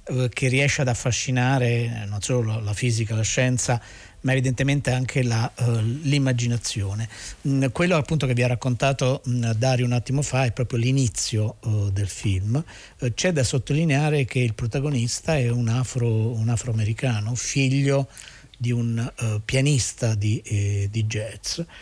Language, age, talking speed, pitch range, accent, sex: Italian, 50-69, 130 wpm, 110-135 Hz, native, male